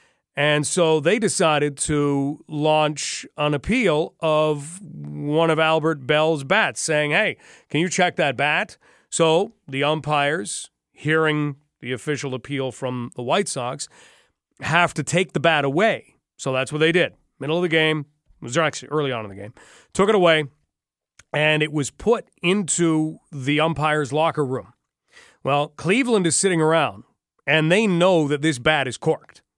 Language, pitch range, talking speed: English, 145-180 Hz, 160 wpm